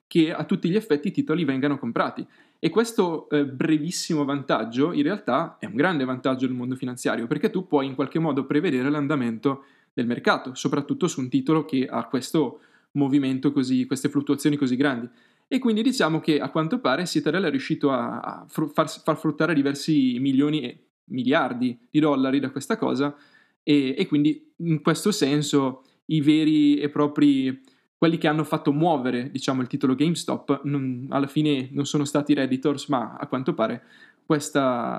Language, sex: Italian, male